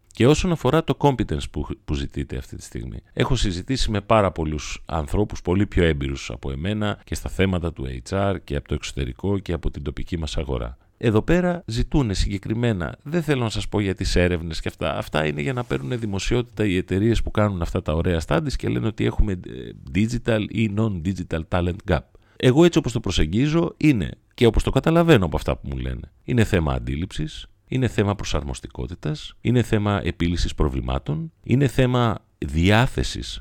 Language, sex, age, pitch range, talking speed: Greek, male, 40-59, 80-110 Hz, 180 wpm